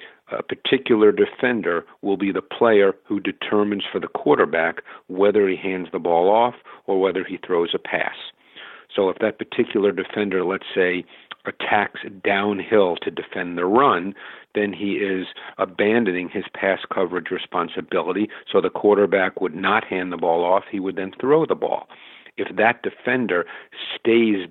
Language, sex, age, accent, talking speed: English, male, 50-69, American, 155 wpm